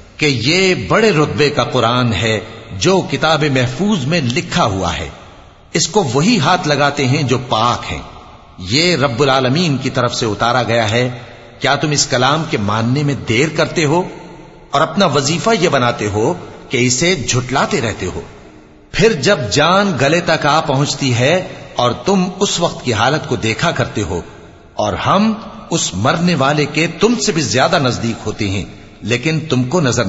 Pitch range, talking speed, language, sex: 115-160 Hz, 170 wpm, English, male